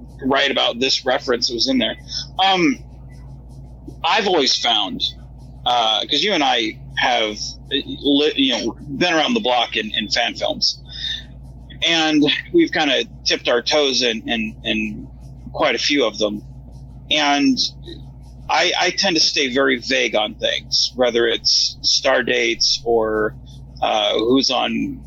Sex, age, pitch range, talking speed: male, 30-49, 120-165 Hz, 150 wpm